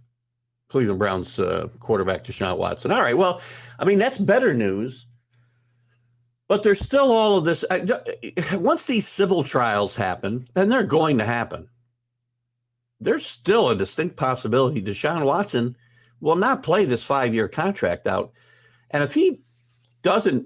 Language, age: English, 60-79